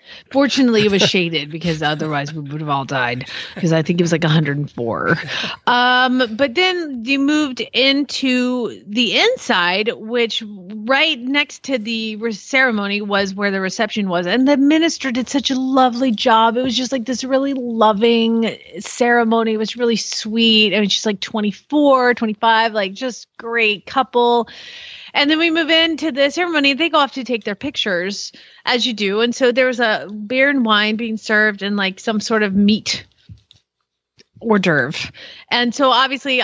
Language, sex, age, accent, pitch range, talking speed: English, female, 30-49, American, 205-260 Hz, 175 wpm